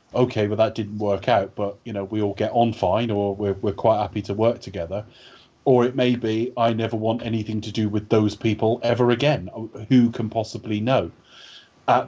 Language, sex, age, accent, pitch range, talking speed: English, male, 30-49, British, 105-130 Hz, 210 wpm